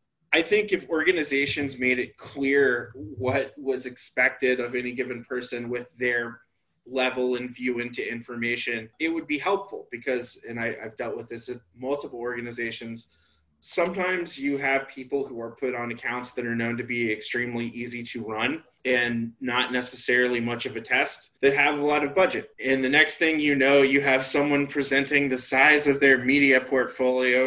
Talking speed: 175 wpm